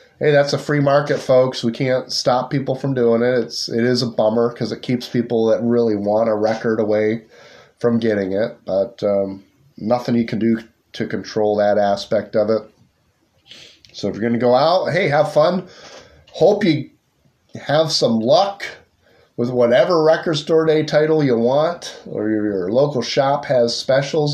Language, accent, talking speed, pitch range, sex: English, American, 180 wpm, 115-145 Hz, male